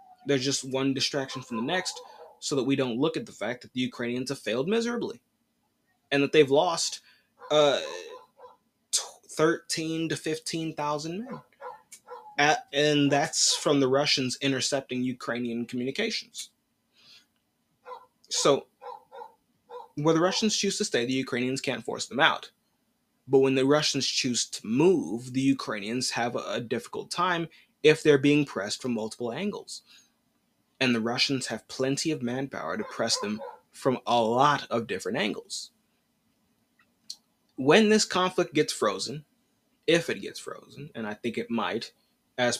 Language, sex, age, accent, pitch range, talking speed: English, male, 20-39, American, 125-190 Hz, 145 wpm